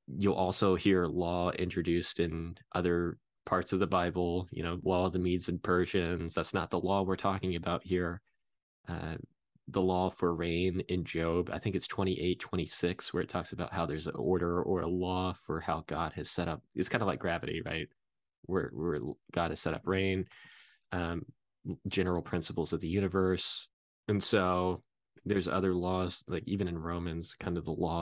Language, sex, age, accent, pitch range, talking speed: English, male, 20-39, American, 85-95 Hz, 185 wpm